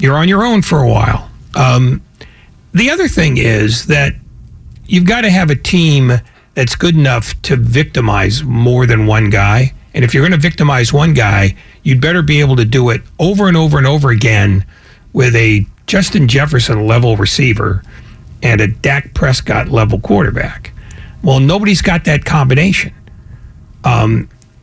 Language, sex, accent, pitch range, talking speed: English, male, American, 115-165 Hz, 160 wpm